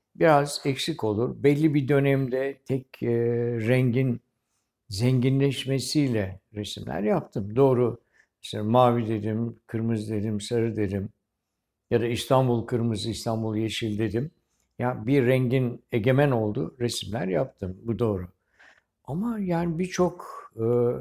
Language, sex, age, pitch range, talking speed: Turkish, male, 60-79, 115-135 Hz, 115 wpm